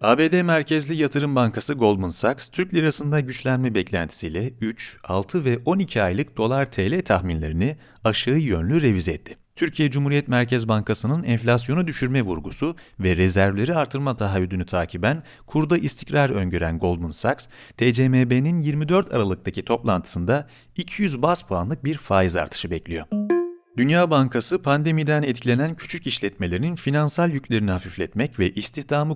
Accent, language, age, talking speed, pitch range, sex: native, Turkish, 40-59, 125 wpm, 95-150 Hz, male